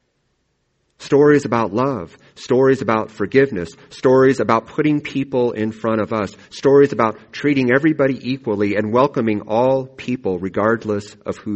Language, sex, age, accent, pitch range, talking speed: English, male, 40-59, American, 90-120 Hz, 135 wpm